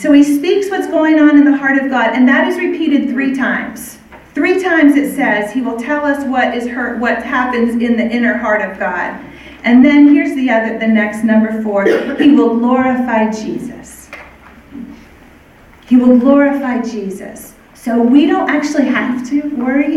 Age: 40-59